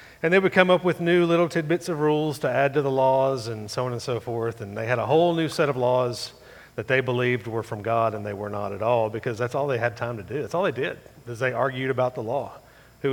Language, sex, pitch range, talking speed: English, male, 115-150 Hz, 285 wpm